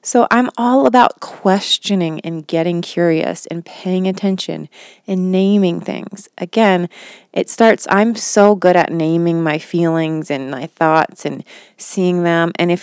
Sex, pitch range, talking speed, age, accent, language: female, 155-200 Hz, 150 wpm, 30-49, American, English